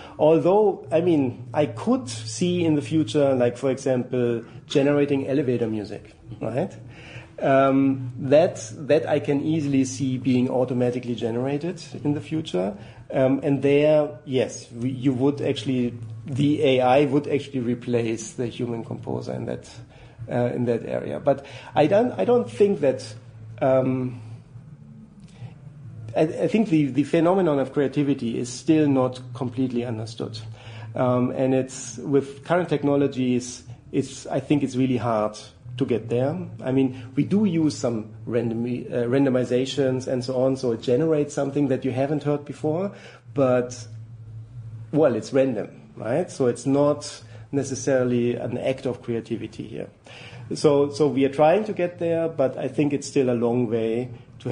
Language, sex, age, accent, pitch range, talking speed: English, male, 40-59, German, 120-145 Hz, 150 wpm